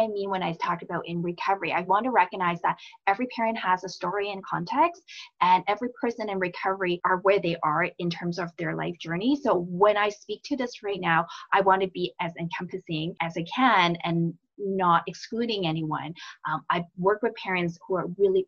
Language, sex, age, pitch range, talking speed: English, female, 30-49, 175-220 Hz, 205 wpm